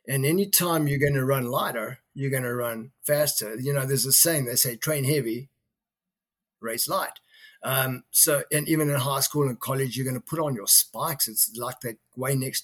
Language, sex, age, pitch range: English, male, 50-69, 125-155 Hz